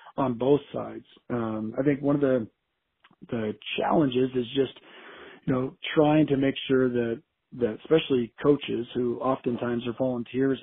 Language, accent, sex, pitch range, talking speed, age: English, American, male, 120-140 Hz, 150 wpm, 40-59